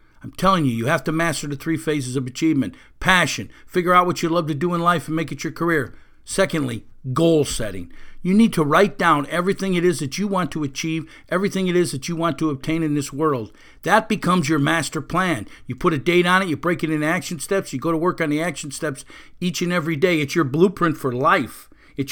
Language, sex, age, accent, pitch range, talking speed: English, male, 50-69, American, 155-210 Hz, 240 wpm